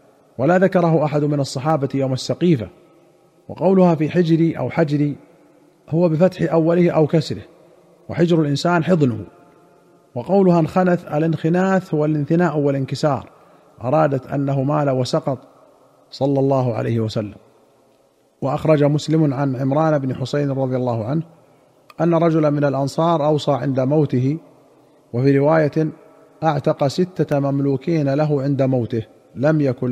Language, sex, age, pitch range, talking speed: Arabic, male, 40-59, 135-165 Hz, 120 wpm